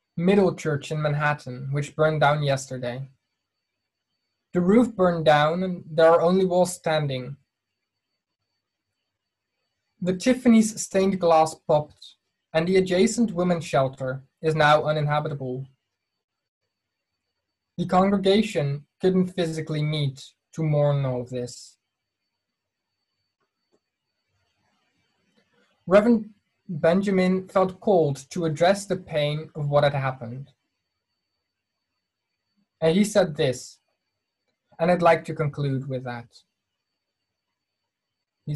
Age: 20-39